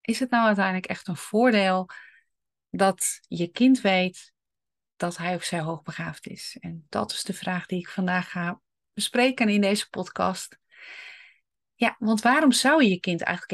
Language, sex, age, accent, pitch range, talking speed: Dutch, female, 30-49, Dutch, 185-225 Hz, 170 wpm